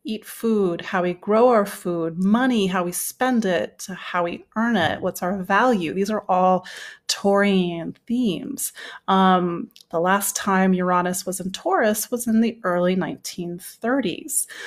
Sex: female